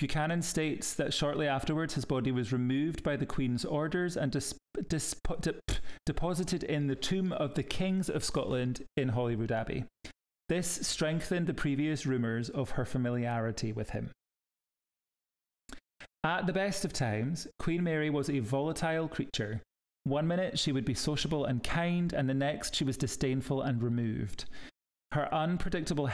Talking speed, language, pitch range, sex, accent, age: 150 wpm, English, 125-155 Hz, male, British, 30-49